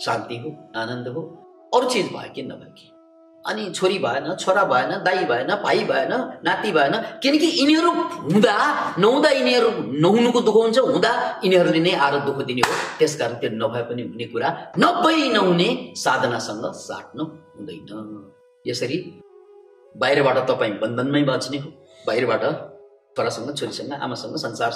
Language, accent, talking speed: English, Indian, 90 wpm